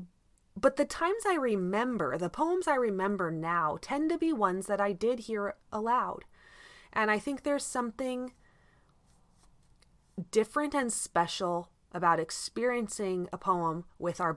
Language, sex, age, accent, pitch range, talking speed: English, female, 20-39, American, 165-220 Hz, 140 wpm